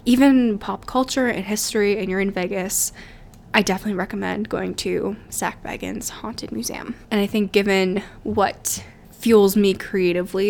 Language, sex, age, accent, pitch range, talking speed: English, female, 10-29, American, 190-215 Hz, 150 wpm